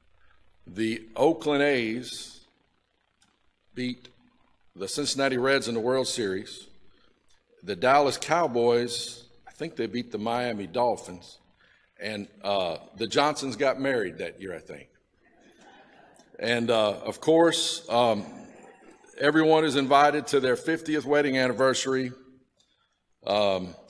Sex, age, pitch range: male, 50-69, 120-145 Hz